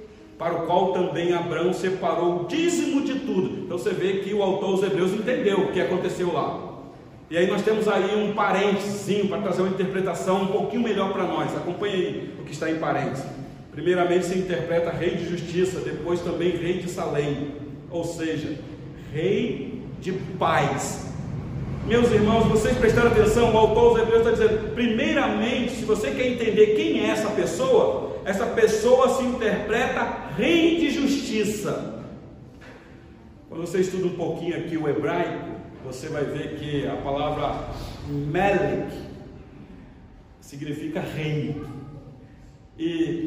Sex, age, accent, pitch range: male, 40-59, Brazilian, 165-215 Hz